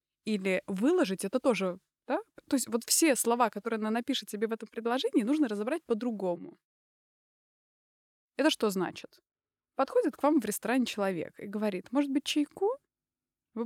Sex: female